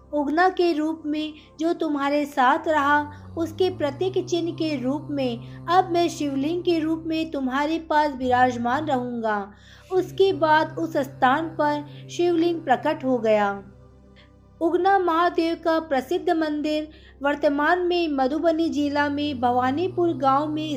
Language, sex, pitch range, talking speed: Hindi, female, 265-335 Hz, 135 wpm